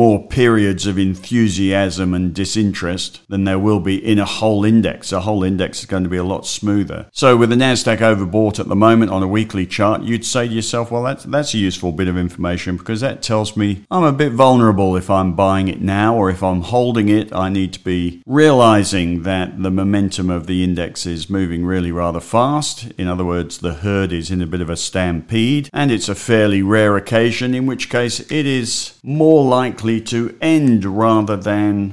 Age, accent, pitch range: 50-69, British, 90-115 Hz